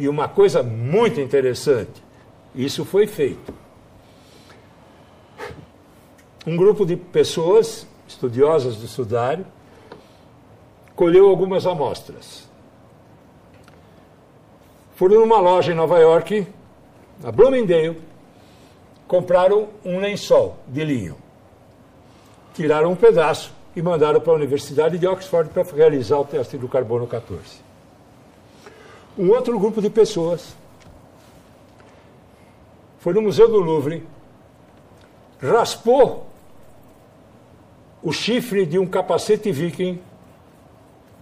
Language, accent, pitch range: Portuguese, Brazilian, 140-210 Hz